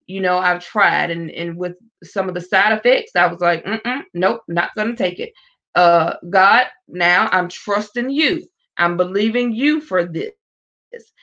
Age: 20-39